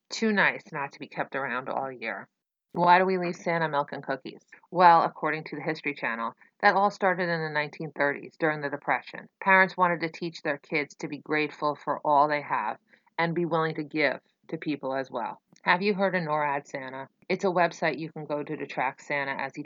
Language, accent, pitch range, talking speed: English, American, 145-175 Hz, 220 wpm